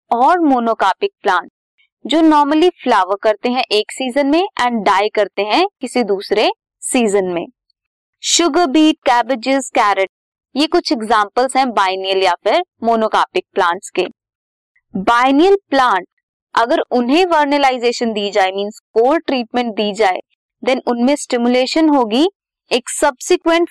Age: 20-39